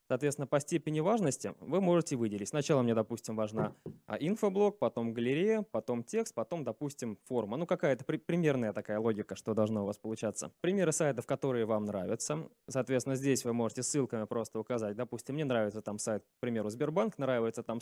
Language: Russian